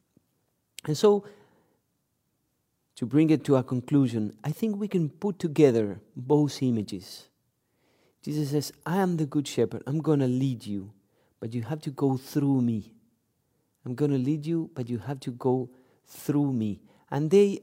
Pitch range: 115-155 Hz